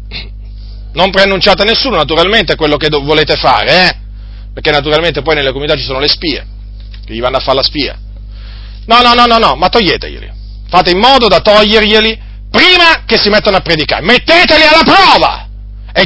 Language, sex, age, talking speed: Italian, male, 40-59, 185 wpm